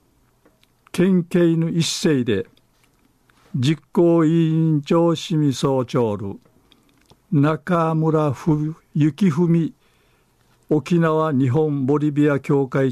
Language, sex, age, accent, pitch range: Japanese, male, 50-69, native, 135-165 Hz